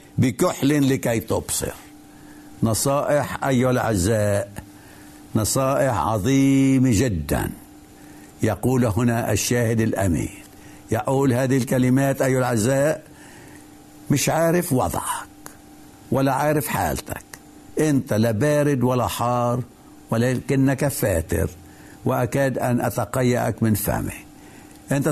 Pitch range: 110-140 Hz